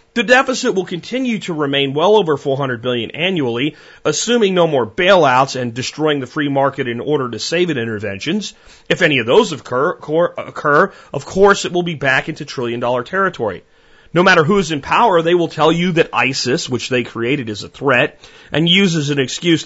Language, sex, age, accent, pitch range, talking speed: English, male, 40-59, American, 135-185 Hz, 200 wpm